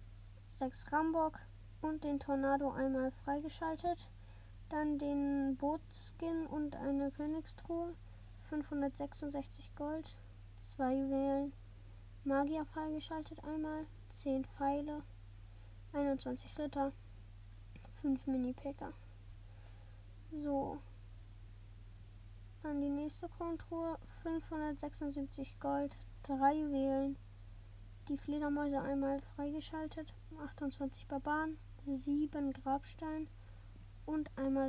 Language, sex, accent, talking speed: German, female, German, 80 wpm